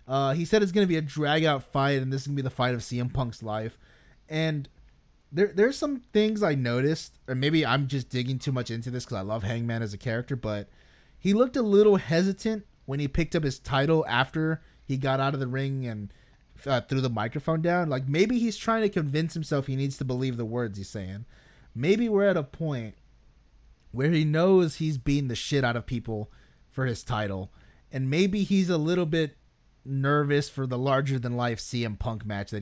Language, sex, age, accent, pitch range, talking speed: English, male, 20-39, American, 120-160 Hz, 215 wpm